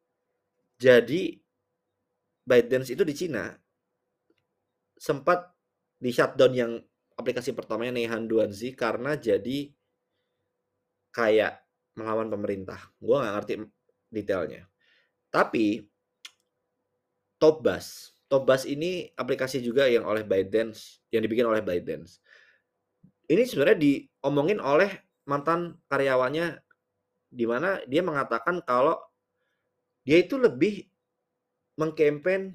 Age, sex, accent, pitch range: 20-39, male, native, 125-180 Hz